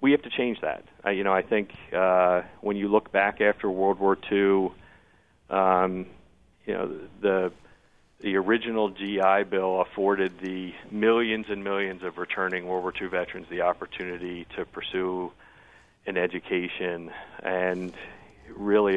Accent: American